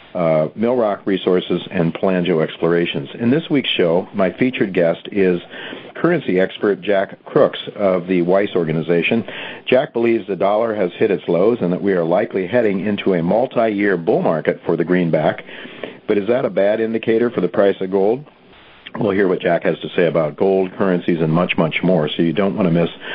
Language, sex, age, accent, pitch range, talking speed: English, male, 50-69, American, 85-110 Hz, 195 wpm